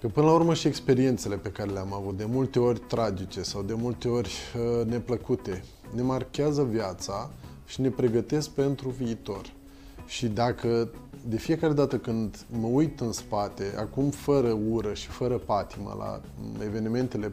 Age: 20-39